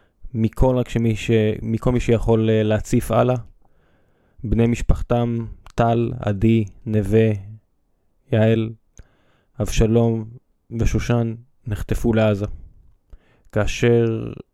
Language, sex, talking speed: Hebrew, male, 75 wpm